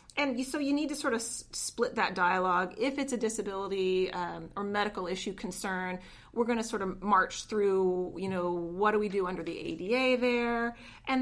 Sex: female